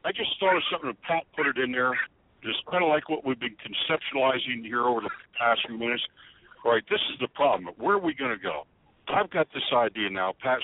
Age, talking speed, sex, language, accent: 60-79, 245 wpm, male, English, American